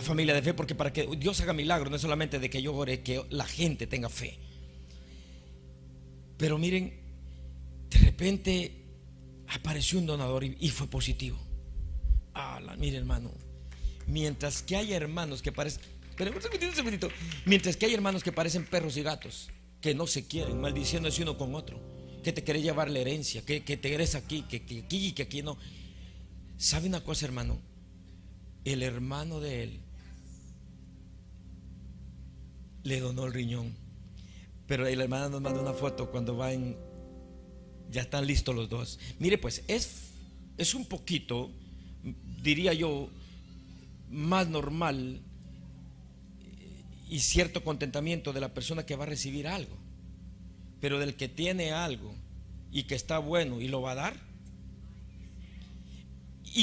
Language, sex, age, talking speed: Spanish, male, 50-69, 150 wpm